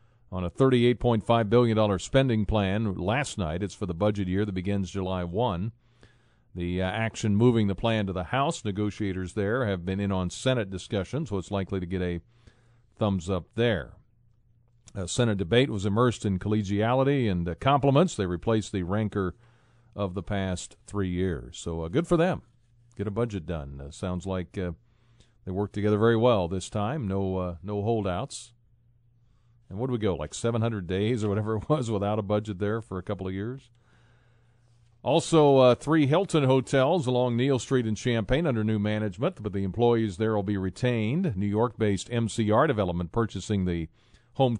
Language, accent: English, American